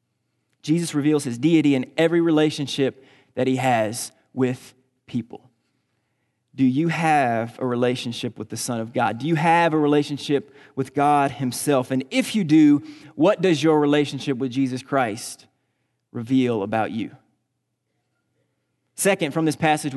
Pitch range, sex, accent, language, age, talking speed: 130-160 Hz, male, American, English, 30-49, 145 wpm